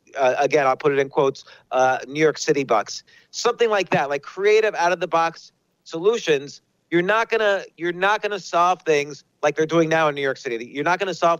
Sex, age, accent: male, 40-59, American